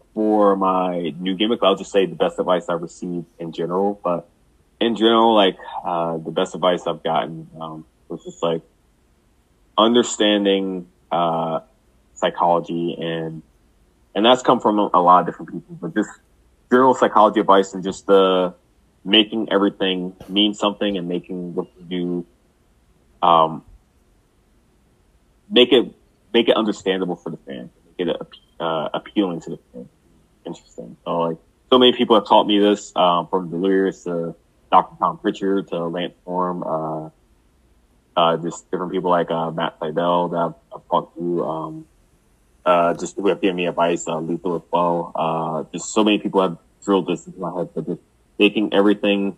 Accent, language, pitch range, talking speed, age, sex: American, English, 85-100 Hz, 165 wpm, 20-39, male